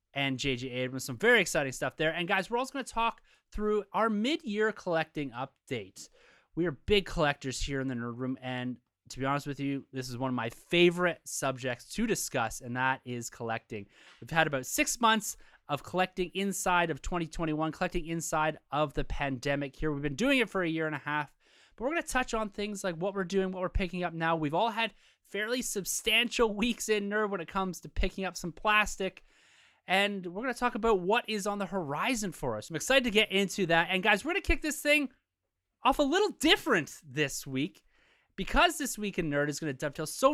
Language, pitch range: English, 150-225 Hz